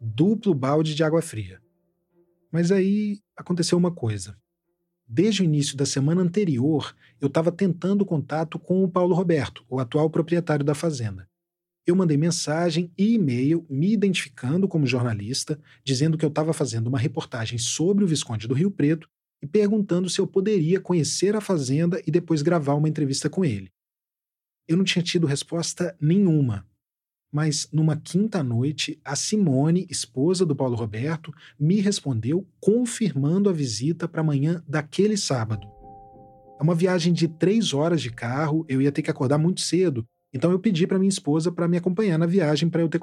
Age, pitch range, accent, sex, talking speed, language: 40-59, 135-180 Hz, Brazilian, male, 165 wpm, Portuguese